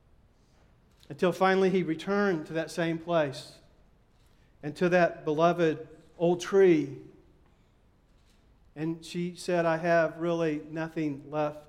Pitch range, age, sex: 155-195 Hz, 40-59, male